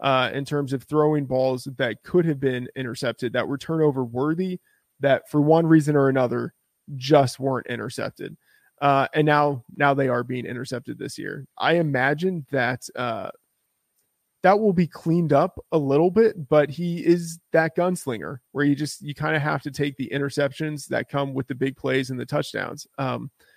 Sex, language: male, English